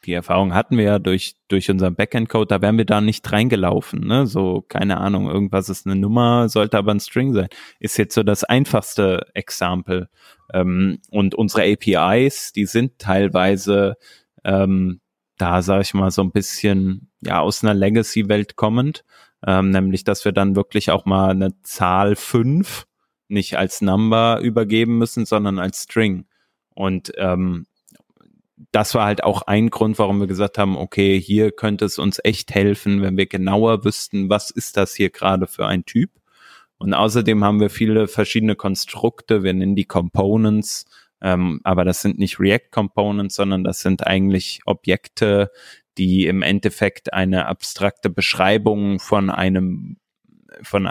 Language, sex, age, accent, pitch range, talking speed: German, male, 20-39, German, 95-105 Hz, 160 wpm